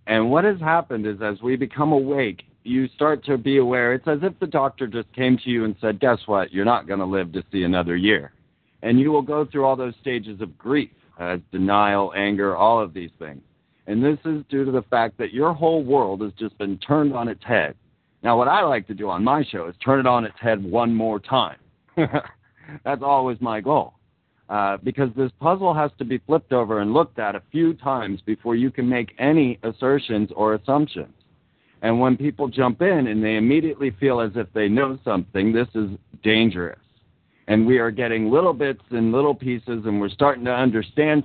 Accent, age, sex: American, 50-69, male